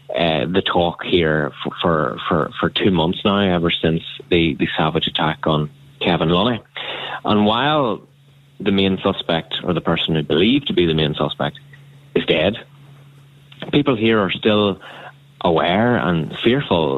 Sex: male